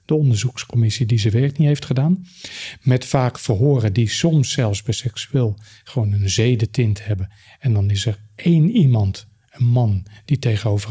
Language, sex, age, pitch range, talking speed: Dutch, male, 40-59, 110-135 Hz, 165 wpm